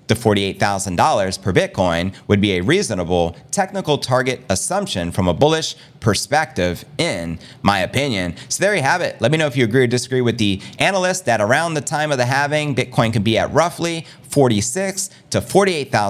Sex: male